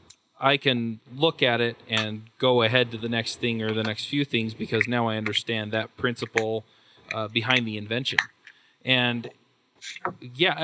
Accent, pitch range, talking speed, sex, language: American, 110-130 Hz, 165 wpm, male, English